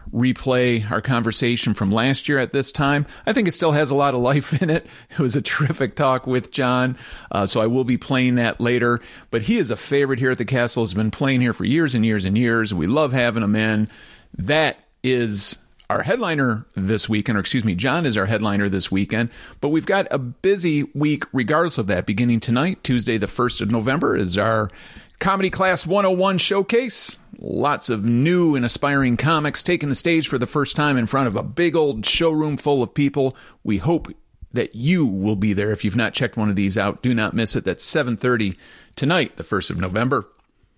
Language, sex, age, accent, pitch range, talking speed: English, male, 40-59, American, 110-145 Hz, 215 wpm